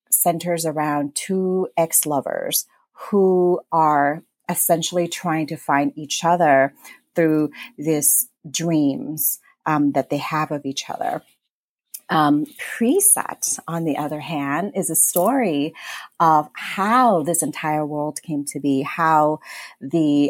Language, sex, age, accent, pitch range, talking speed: English, female, 30-49, American, 145-180 Hz, 120 wpm